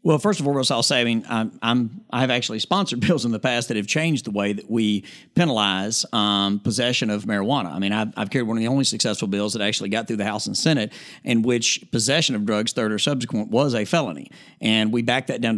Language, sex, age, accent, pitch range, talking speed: English, male, 50-69, American, 105-135 Hz, 245 wpm